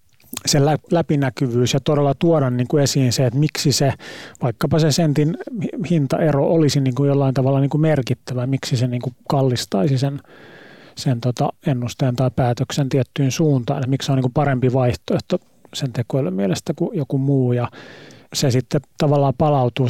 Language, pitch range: Finnish, 130-150 Hz